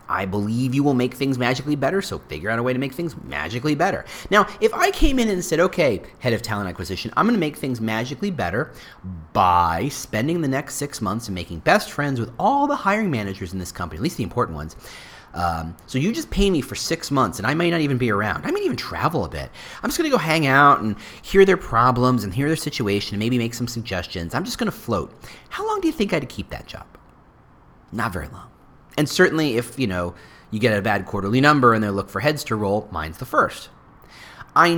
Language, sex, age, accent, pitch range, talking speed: English, male, 30-49, American, 95-150 Hz, 245 wpm